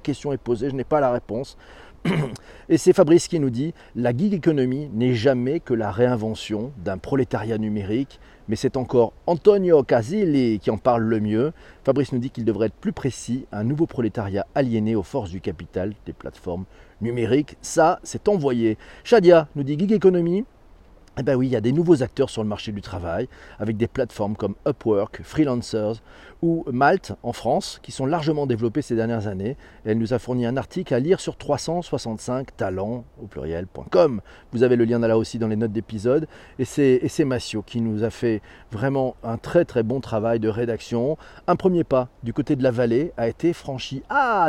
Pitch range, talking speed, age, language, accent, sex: 110-140 Hz, 195 wpm, 40-59, French, French, male